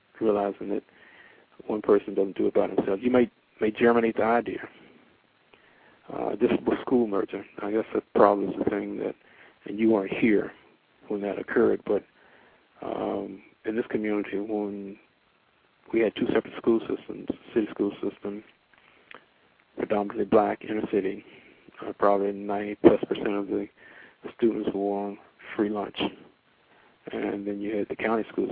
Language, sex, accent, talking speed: English, male, American, 155 wpm